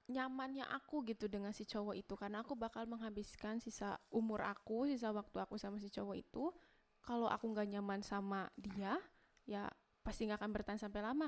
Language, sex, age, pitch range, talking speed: Indonesian, female, 10-29, 210-255 Hz, 180 wpm